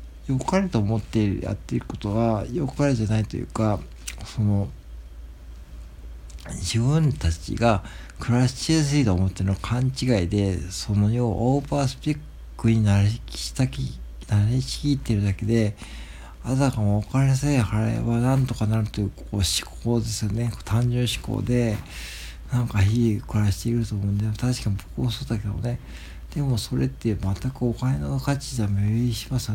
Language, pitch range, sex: Japanese, 100-125 Hz, male